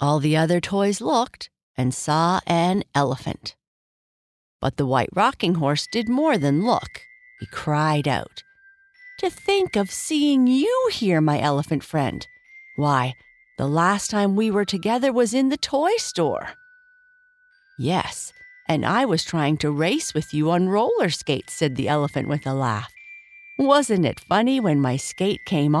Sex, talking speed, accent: female, 155 wpm, American